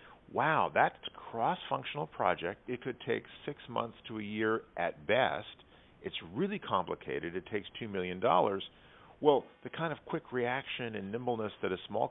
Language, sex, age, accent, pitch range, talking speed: English, male, 50-69, American, 90-115 Hz, 165 wpm